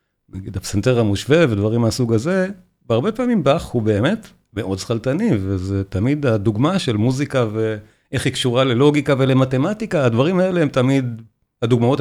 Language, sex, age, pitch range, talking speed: Hebrew, male, 50-69, 110-150 Hz, 140 wpm